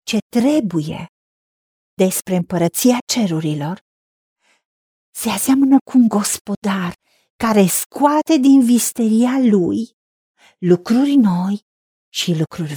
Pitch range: 200-260 Hz